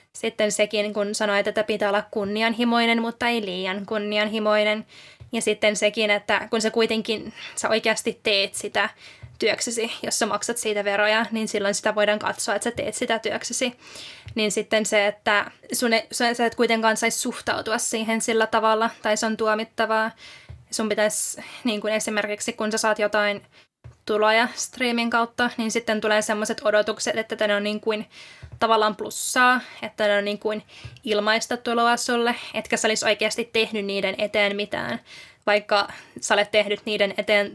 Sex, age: female, 20-39